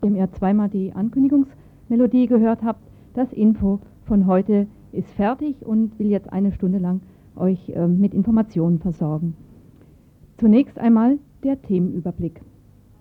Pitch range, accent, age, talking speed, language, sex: 185-245 Hz, German, 50-69, 125 wpm, German, female